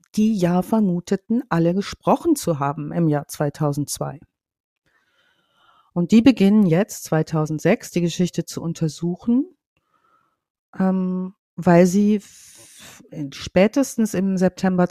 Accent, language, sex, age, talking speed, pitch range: German, German, female, 50-69, 95 wpm, 160-200 Hz